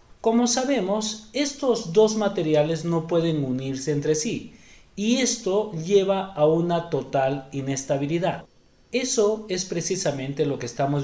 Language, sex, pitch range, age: Spanish, male, 145-205 Hz, 40-59